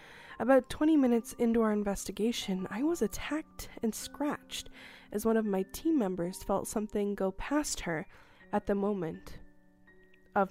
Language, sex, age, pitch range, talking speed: English, female, 20-39, 195-255 Hz, 150 wpm